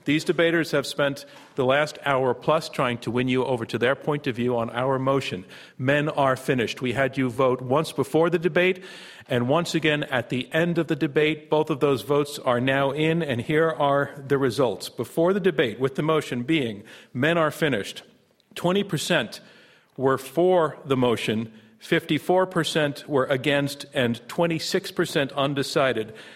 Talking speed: 170 wpm